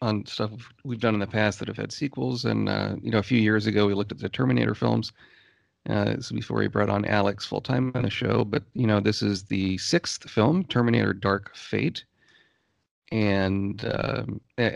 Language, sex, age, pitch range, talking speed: English, male, 40-59, 100-115 Hz, 205 wpm